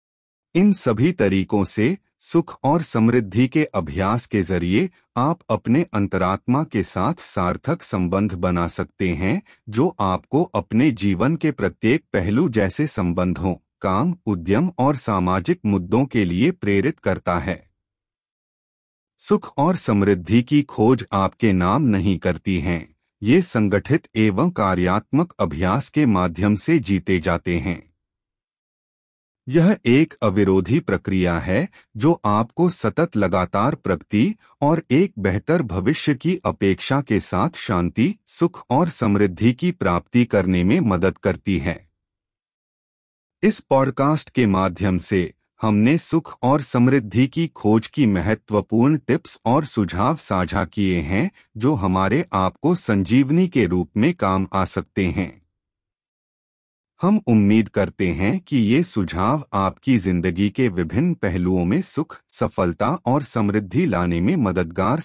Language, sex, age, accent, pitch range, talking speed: Hindi, male, 30-49, native, 95-135 Hz, 130 wpm